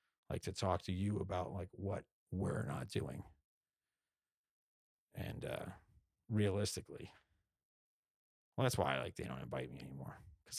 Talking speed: 140 wpm